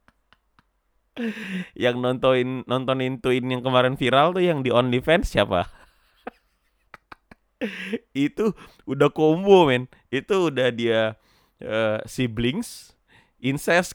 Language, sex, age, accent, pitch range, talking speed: Indonesian, male, 30-49, native, 100-140 Hz, 95 wpm